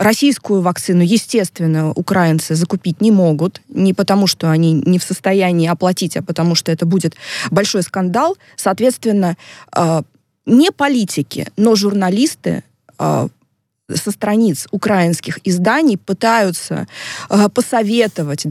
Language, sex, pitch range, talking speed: Russian, female, 175-225 Hz, 105 wpm